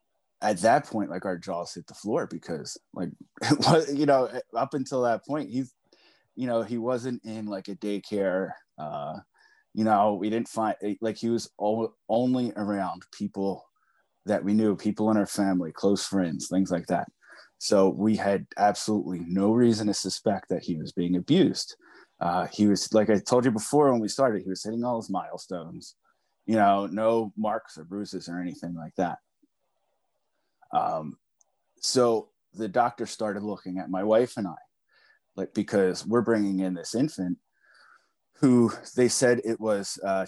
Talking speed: 175 wpm